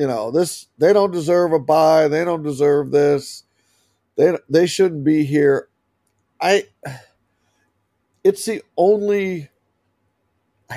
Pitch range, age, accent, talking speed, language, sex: 135-170 Hz, 50-69, American, 125 wpm, English, male